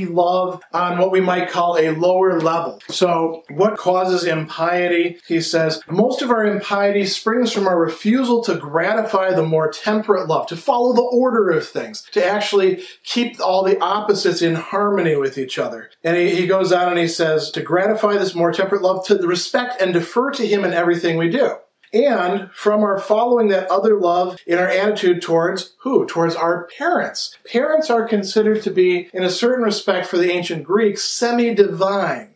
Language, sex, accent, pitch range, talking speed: English, male, American, 165-205 Hz, 185 wpm